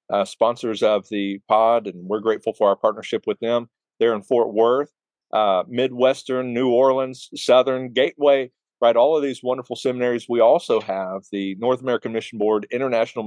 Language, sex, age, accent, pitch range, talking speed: English, male, 40-59, American, 110-135 Hz, 170 wpm